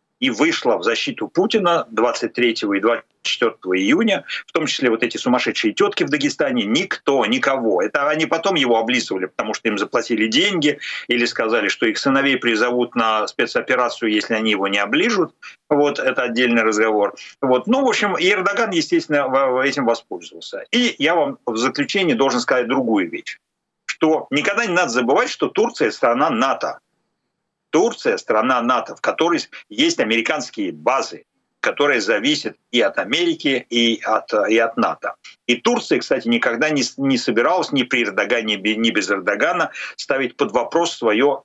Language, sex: Ukrainian, male